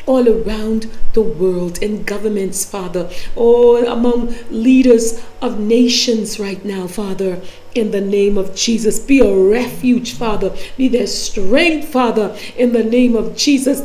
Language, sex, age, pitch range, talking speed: English, female, 40-59, 210-255 Hz, 145 wpm